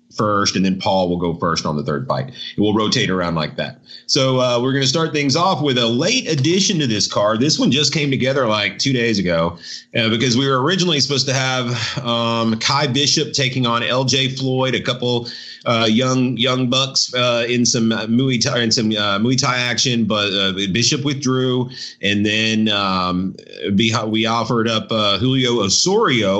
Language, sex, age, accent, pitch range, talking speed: English, male, 30-49, American, 110-140 Hz, 195 wpm